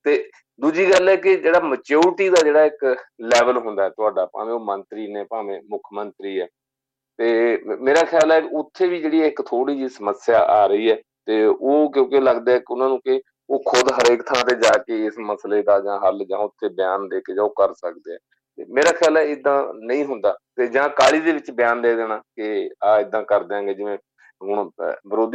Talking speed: 105 wpm